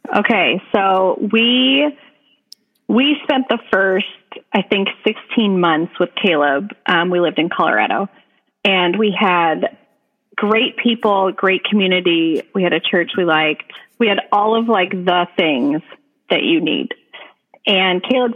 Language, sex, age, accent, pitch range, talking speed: English, female, 30-49, American, 180-220 Hz, 140 wpm